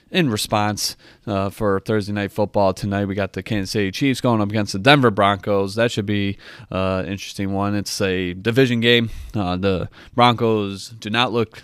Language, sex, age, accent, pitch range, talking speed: English, male, 20-39, American, 100-120 Hz, 190 wpm